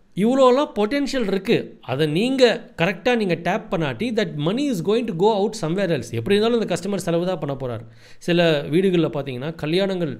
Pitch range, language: 145-200 Hz, Tamil